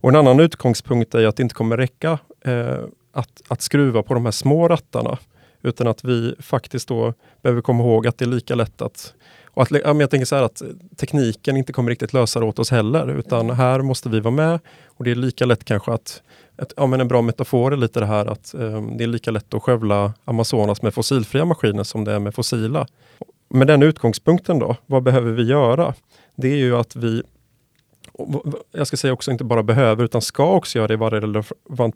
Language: Swedish